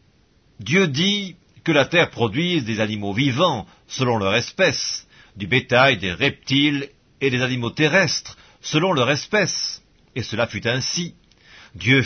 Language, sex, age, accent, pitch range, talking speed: English, male, 50-69, French, 120-170 Hz, 140 wpm